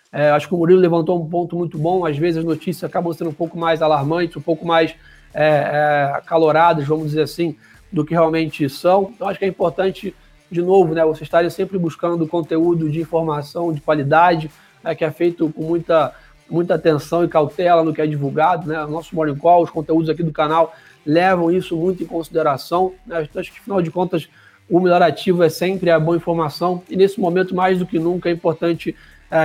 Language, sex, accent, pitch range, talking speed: Portuguese, male, Brazilian, 160-175 Hz, 205 wpm